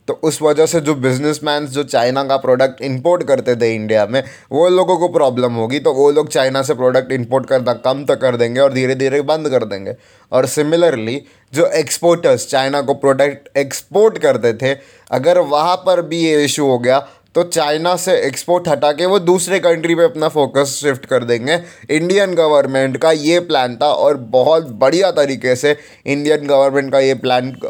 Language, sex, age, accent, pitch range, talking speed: Hindi, male, 20-39, native, 130-160 Hz, 190 wpm